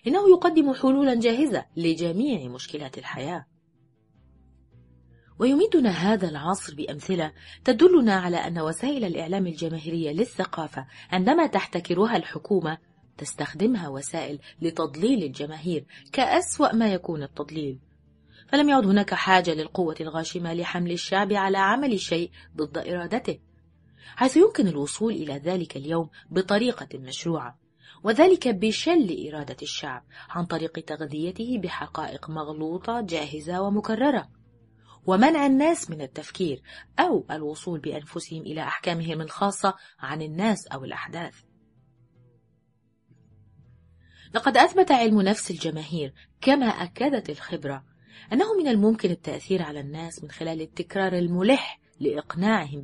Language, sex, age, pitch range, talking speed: Arabic, female, 30-49, 145-210 Hz, 105 wpm